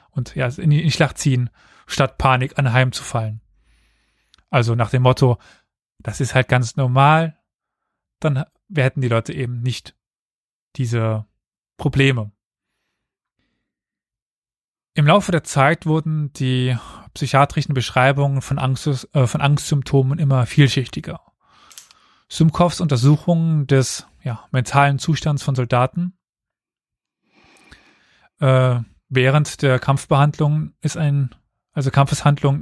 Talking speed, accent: 105 wpm, German